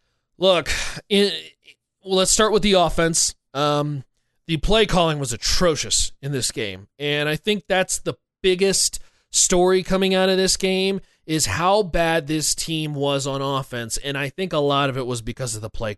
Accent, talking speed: American, 175 wpm